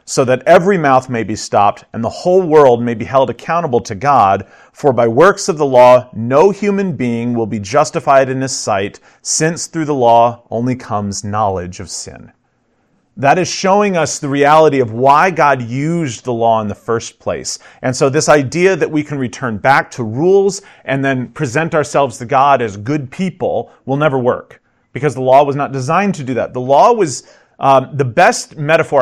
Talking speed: 200 wpm